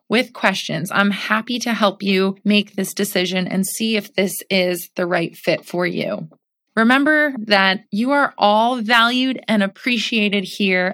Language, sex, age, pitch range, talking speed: English, female, 20-39, 185-225 Hz, 160 wpm